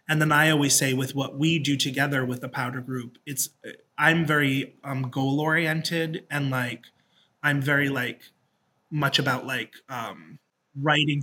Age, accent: 30-49, American